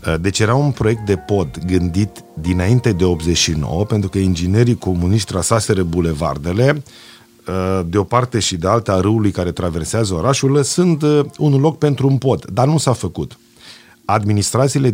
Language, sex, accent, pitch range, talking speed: Romanian, male, native, 90-115 Hz, 155 wpm